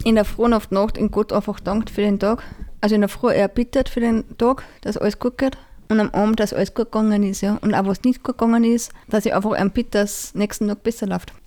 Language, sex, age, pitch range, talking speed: German, female, 20-39, 200-230 Hz, 275 wpm